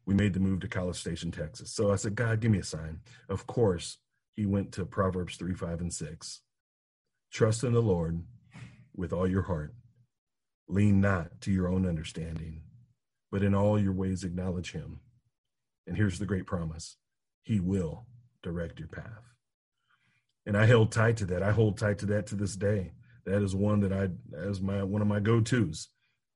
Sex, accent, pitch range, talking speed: male, American, 90-110 Hz, 185 wpm